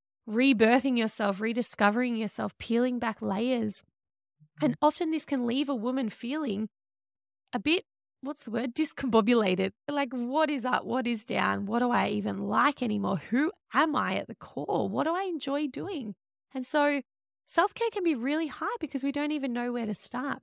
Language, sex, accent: English, female, Australian